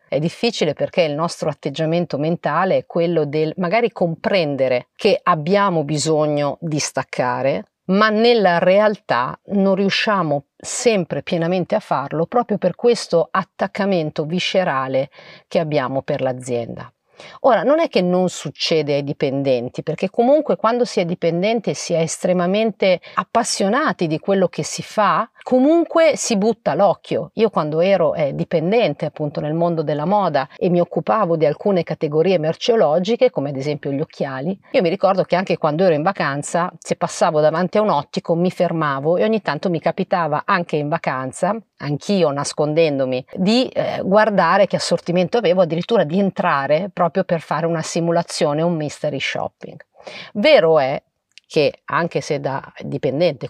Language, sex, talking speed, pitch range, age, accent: Italian, female, 155 wpm, 155-200 Hz, 40-59, native